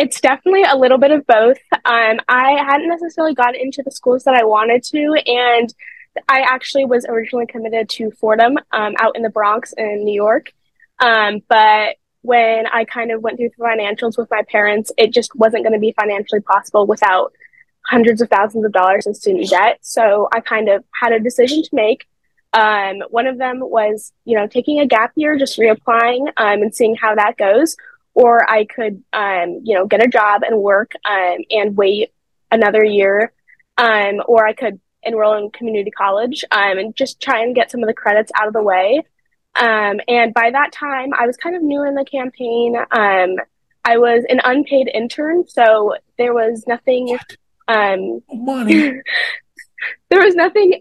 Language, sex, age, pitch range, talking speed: English, female, 10-29, 215-270 Hz, 185 wpm